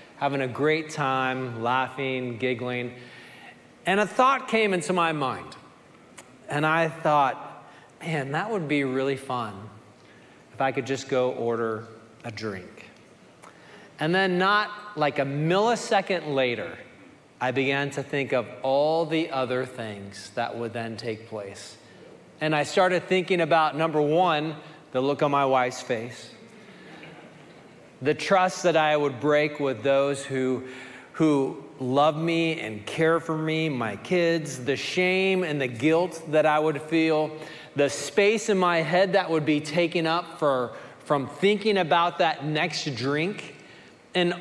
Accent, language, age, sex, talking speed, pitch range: American, English, 40-59, male, 145 wpm, 130-170 Hz